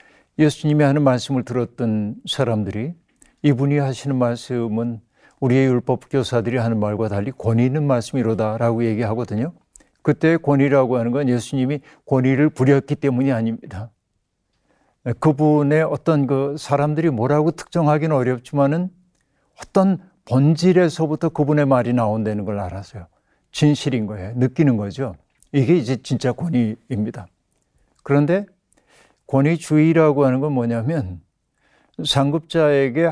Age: 50-69